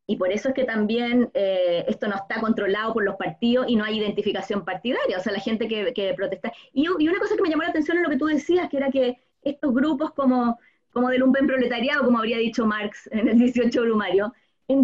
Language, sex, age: Spanish, female, 20-39